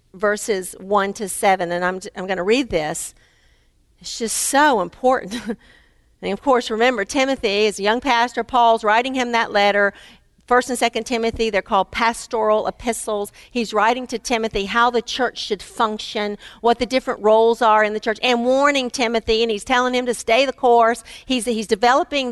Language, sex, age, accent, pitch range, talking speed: English, female, 50-69, American, 225-300 Hz, 185 wpm